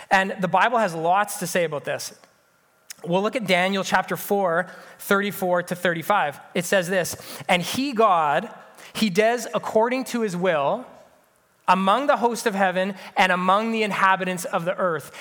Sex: male